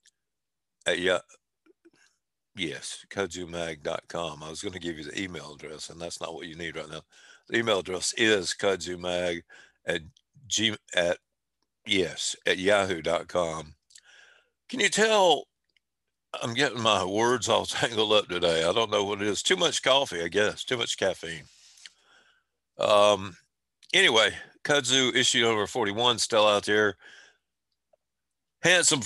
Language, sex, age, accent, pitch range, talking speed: English, male, 50-69, American, 90-120 Hz, 140 wpm